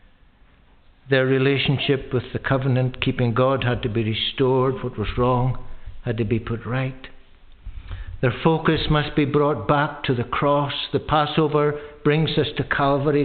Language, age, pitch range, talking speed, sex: English, 60-79, 105-145 Hz, 155 wpm, male